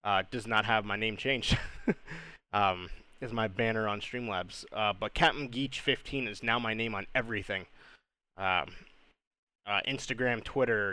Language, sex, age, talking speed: English, male, 20-39, 145 wpm